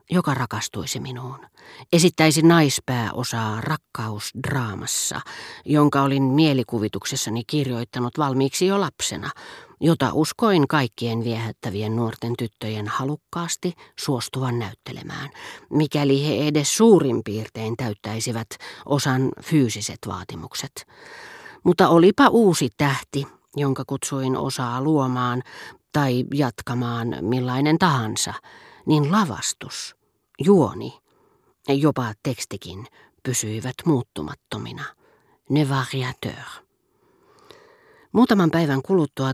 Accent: native